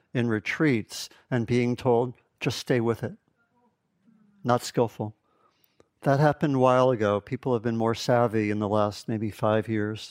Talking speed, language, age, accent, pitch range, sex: 160 wpm, English, 60-79, American, 115-140 Hz, male